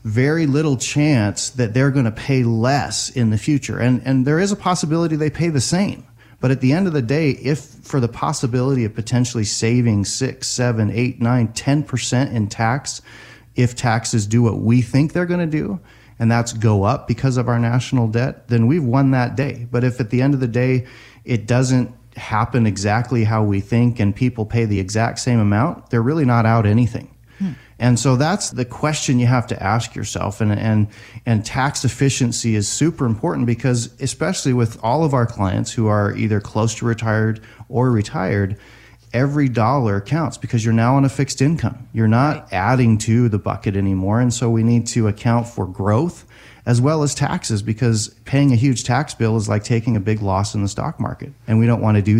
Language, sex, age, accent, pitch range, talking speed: English, male, 30-49, American, 110-135 Hz, 205 wpm